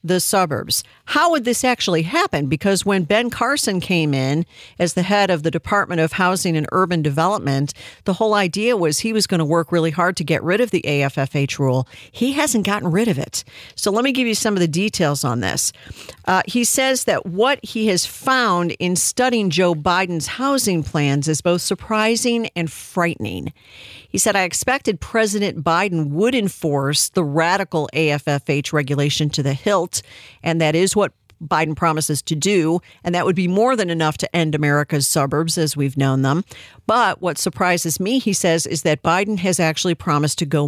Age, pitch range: 50-69, 150-200 Hz